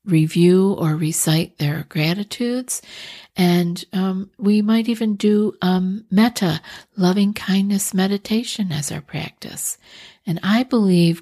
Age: 50-69